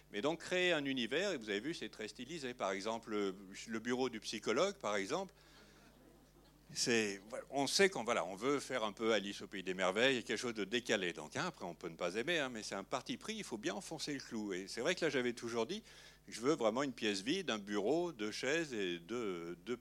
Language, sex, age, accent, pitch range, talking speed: French, male, 60-79, French, 95-135 Hz, 240 wpm